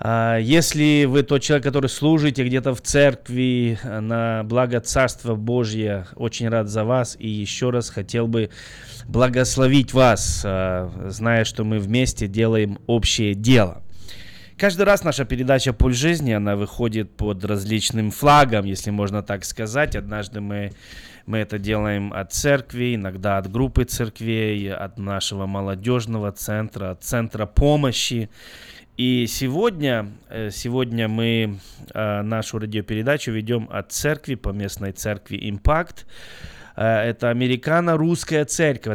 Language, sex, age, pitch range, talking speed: Russian, male, 20-39, 105-130 Hz, 125 wpm